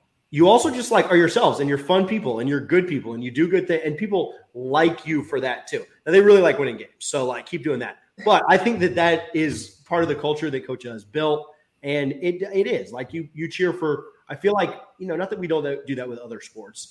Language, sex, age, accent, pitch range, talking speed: English, male, 30-49, American, 125-170 Hz, 265 wpm